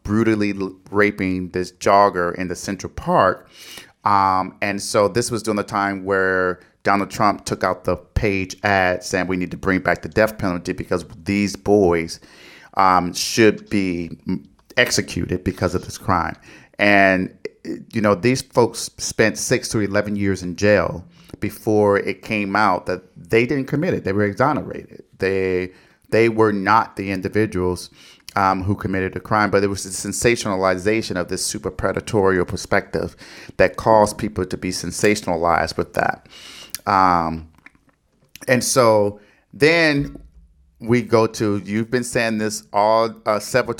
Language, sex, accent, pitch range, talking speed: English, male, American, 90-110 Hz, 150 wpm